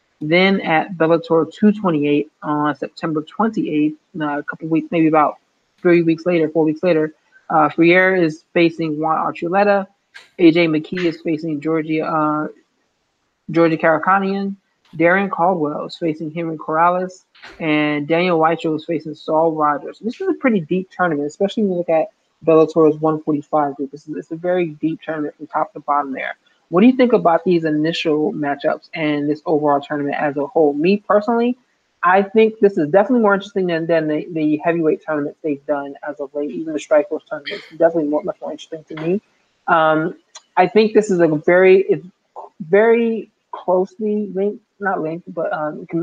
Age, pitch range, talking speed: 20-39, 155-185 Hz, 170 wpm